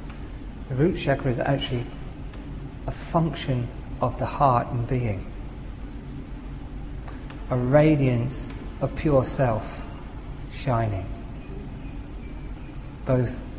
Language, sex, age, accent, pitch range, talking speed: English, male, 40-59, British, 120-140 Hz, 85 wpm